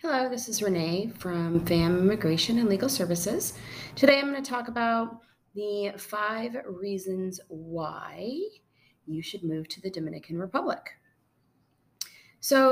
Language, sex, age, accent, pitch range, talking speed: English, female, 30-49, American, 170-215 Hz, 125 wpm